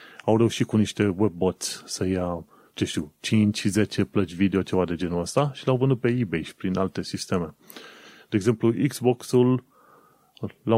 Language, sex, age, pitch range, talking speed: Romanian, male, 30-49, 100-120 Hz, 165 wpm